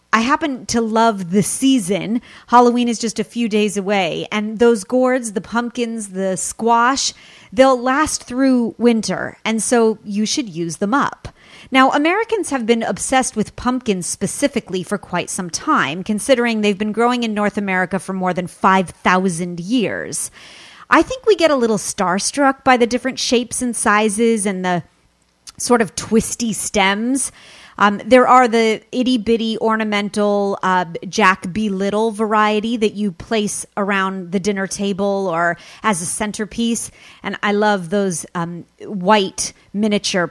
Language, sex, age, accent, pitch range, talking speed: English, female, 30-49, American, 190-235 Hz, 155 wpm